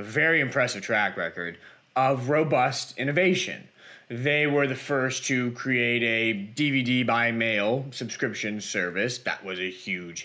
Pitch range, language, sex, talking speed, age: 115-145 Hz, English, male, 135 wpm, 30-49